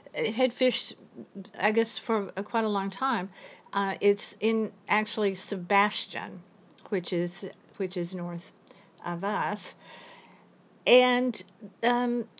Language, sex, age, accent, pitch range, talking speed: English, female, 50-69, American, 180-230 Hz, 110 wpm